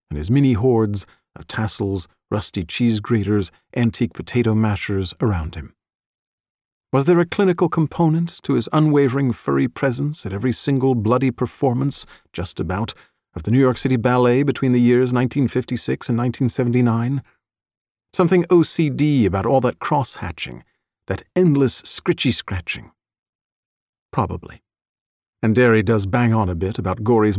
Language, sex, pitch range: English, male, 100-130 Hz